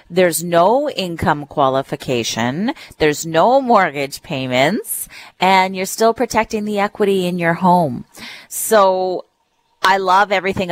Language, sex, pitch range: English, female, 155-205 Hz